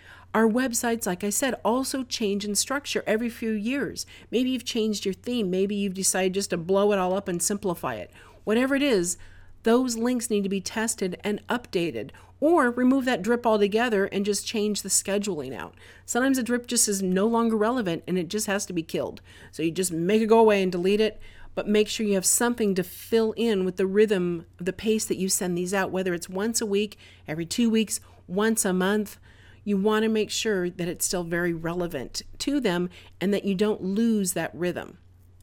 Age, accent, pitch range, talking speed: 40-59, American, 185-235 Hz, 210 wpm